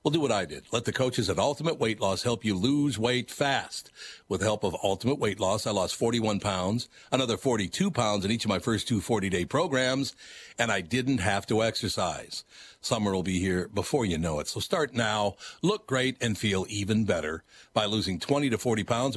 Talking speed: 215 wpm